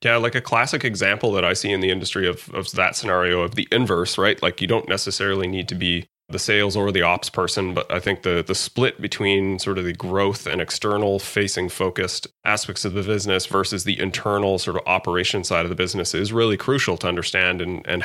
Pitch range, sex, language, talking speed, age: 90-105 Hz, male, English, 225 wpm, 30-49